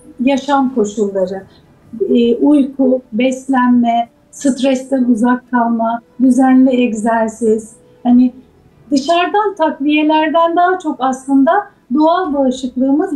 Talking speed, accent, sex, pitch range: 80 wpm, native, female, 230-280 Hz